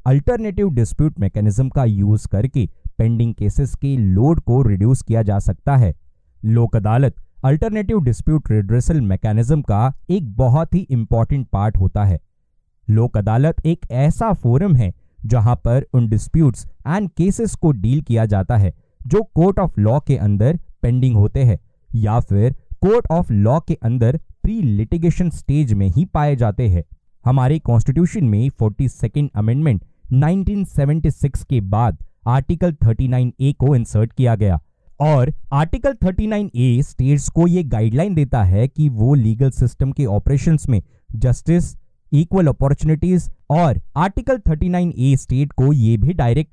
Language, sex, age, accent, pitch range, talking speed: Hindi, male, 20-39, native, 110-155 Hz, 145 wpm